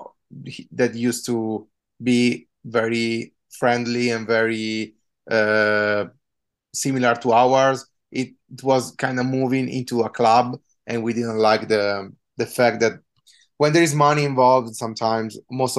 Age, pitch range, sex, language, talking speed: 20-39, 115-135 Hz, male, English, 135 wpm